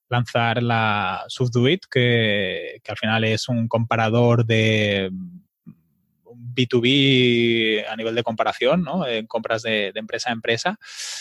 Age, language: 20-39, Spanish